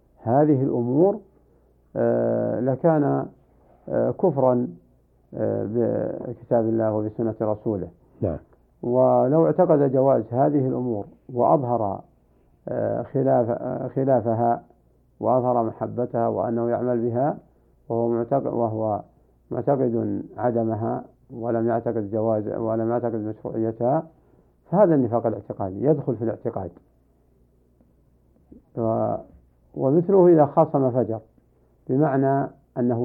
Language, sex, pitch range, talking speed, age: Arabic, male, 95-130 Hz, 80 wpm, 50-69